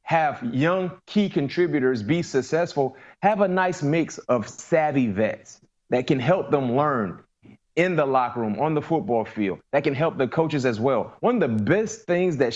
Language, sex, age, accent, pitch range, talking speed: English, male, 30-49, American, 135-175 Hz, 185 wpm